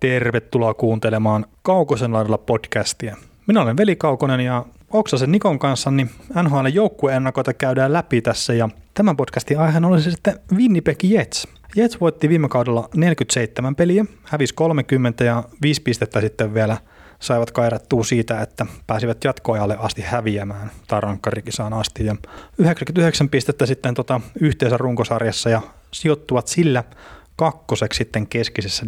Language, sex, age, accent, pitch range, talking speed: Finnish, male, 30-49, native, 115-150 Hz, 125 wpm